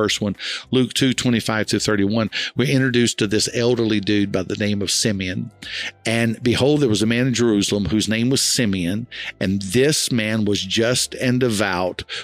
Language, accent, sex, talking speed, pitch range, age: English, American, male, 180 wpm, 105-125 Hz, 50-69